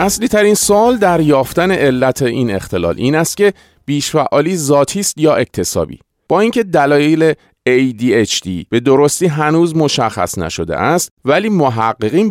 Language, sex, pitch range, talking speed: Persian, male, 105-160 Hz, 135 wpm